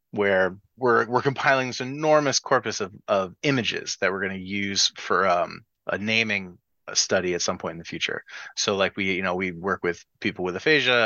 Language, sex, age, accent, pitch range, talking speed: English, male, 30-49, American, 95-125 Hz, 205 wpm